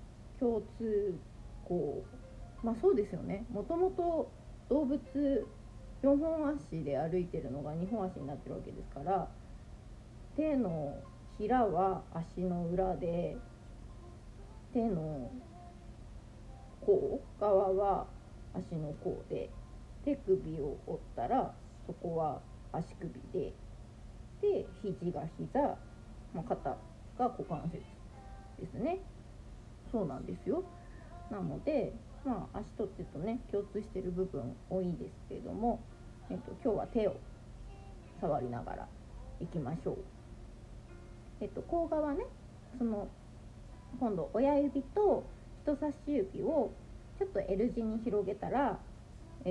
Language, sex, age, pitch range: Japanese, female, 20-39, 170-260 Hz